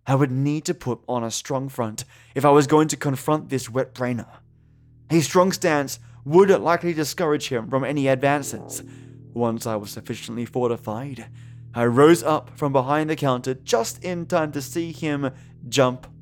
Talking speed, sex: 170 wpm, male